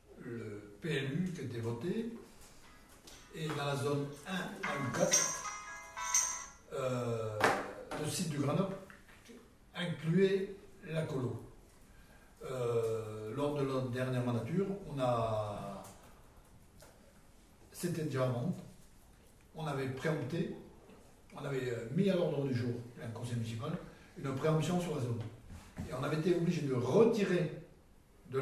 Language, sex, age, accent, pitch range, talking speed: French, male, 60-79, French, 115-155 Hz, 115 wpm